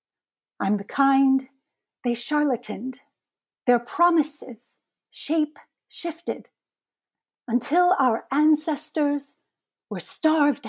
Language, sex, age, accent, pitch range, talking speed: English, female, 40-59, American, 220-285 Hz, 80 wpm